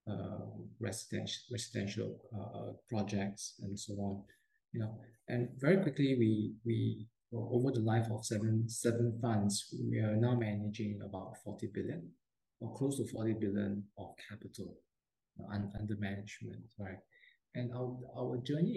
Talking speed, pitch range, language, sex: 140 wpm, 100-120 Hz, English, male